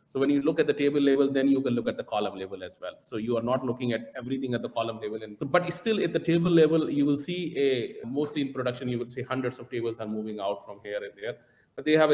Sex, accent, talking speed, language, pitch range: male, Indian, 285 wpm, English, 115-155 Hz